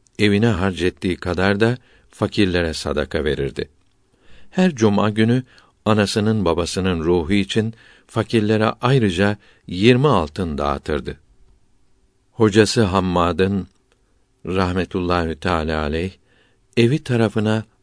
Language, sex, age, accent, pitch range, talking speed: Turkish, male, 60-79, native, 90-115 Hz, 90 wpm